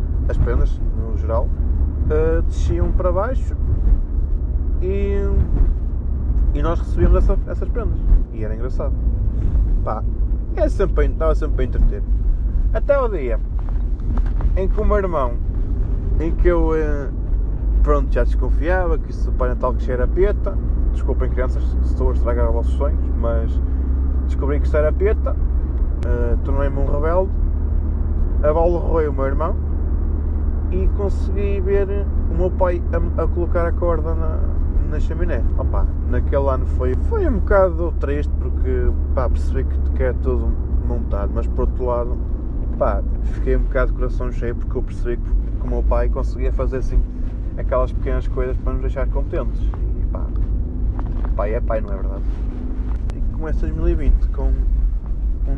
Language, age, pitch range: Portuguese, 20-39, 65-85 Hz